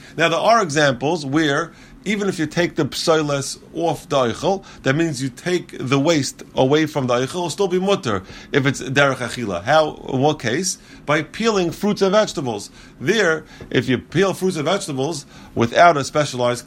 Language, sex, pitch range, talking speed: English, male, 140-185 Hz, 185 wpm